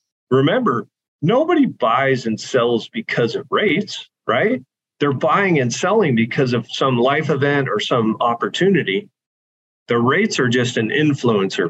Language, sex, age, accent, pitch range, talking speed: English, male, 40-59, American, 110-135 Hz, 140 wpm